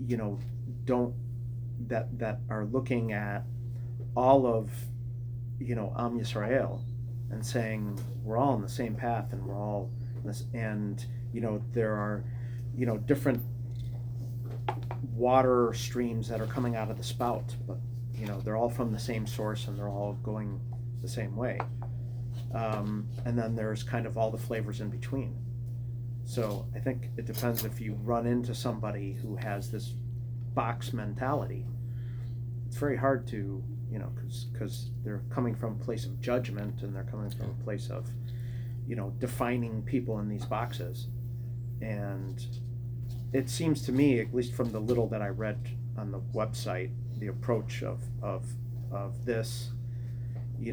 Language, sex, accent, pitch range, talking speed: English, male, American, 115-120 Hz, 160 wpm